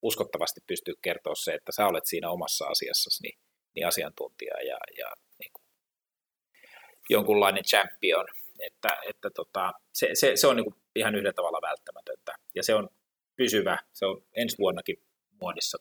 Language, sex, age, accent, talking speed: Finnish, male, 30-49, native, 150 wpm